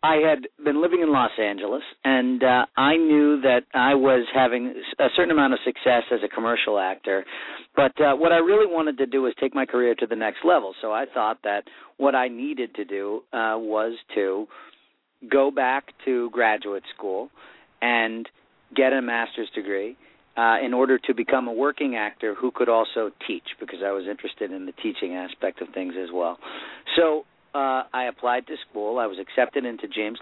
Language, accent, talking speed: English, American, 195 wpm